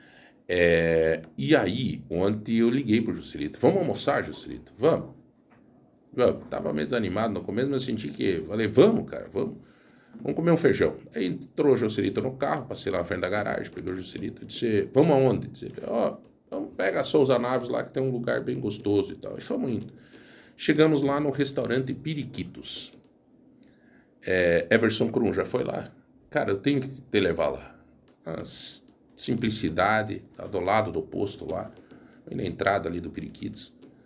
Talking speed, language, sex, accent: 175 wpm, Portuguese, male, Brazilian